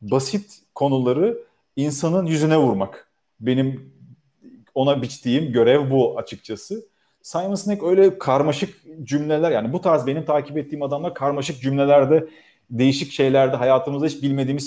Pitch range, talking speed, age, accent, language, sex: 135-175 Hz, 125 wpm, 40-59, native, Turkish, male